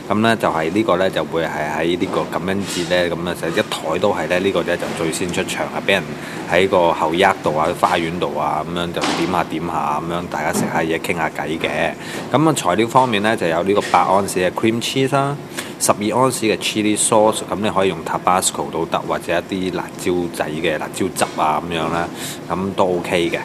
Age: 20-39